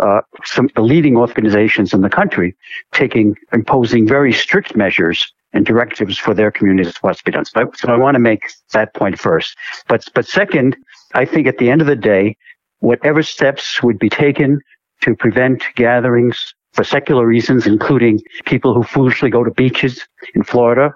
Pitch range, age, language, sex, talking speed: 110-135 Hz, 60-79, English, male, 185 wpm